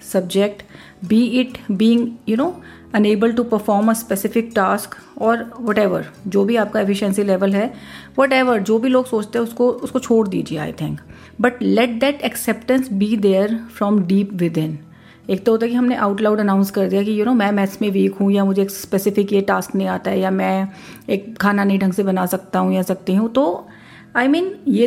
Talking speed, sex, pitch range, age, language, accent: 215 wpm, female, 195-235 Hz, 40-59, Hindi, native